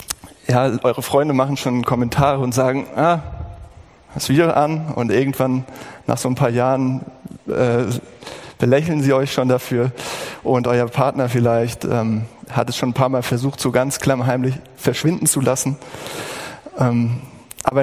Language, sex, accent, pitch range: German, male, German, 125-145 Hz